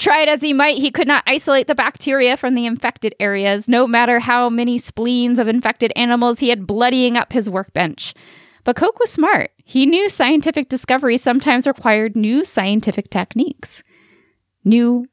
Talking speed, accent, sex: 165 wpm, American, female